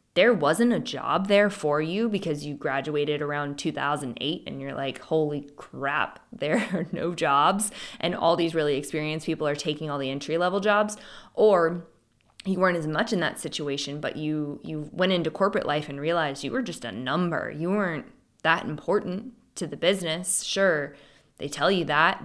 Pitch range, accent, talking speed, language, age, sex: 155-205 Hz, American, 185 wpm, English, 20-39, female